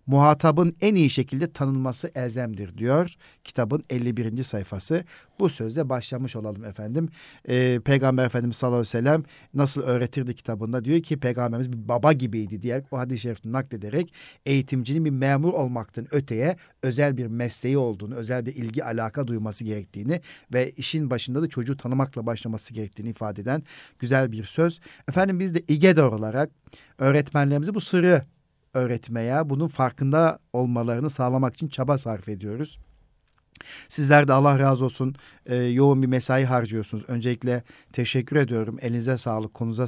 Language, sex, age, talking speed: Turkish, male, 50-69, 145 wpm